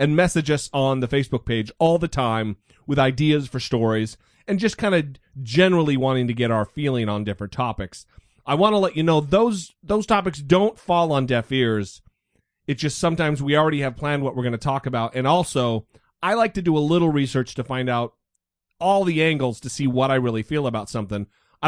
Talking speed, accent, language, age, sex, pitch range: 215 wpm, American, English, 30-49, male, 110-150 Hz